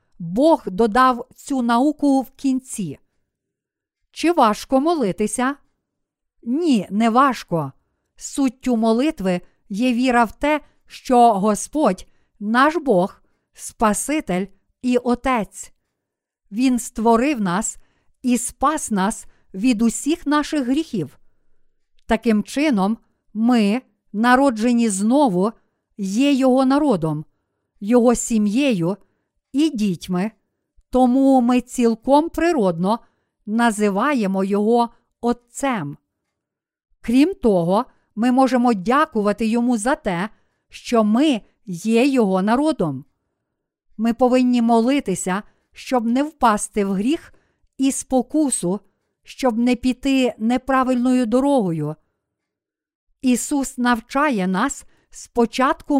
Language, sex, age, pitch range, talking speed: Ukrainian, female, 50-69, 210-270 Hz, 95 wpm